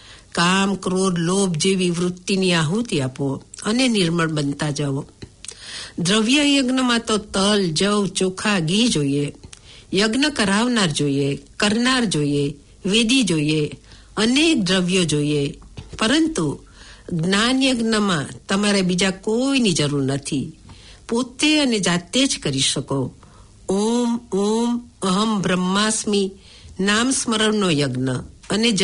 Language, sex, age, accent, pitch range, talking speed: English, female, 50-69, Indian, 150-220 Hz, 75 wpm